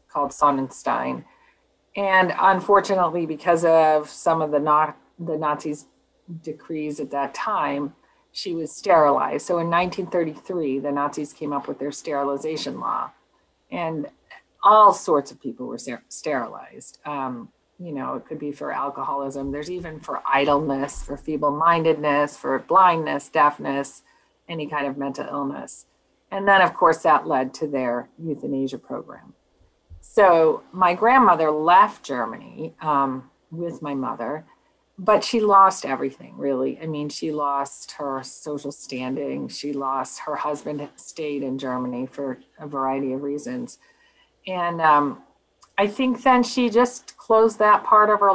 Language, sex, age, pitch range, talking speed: English, female, 40-59, 140-195 Hz, 140 wpm